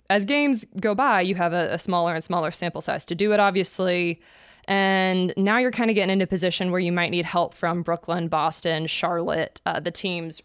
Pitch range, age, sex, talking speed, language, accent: 170-210 Hz, 20-39, female, 220 wpm, English, American